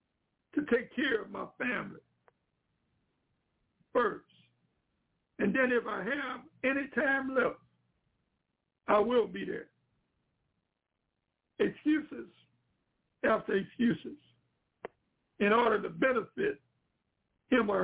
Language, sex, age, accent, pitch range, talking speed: English, male, 60-79, American, 220-270 Hz, 95 wpm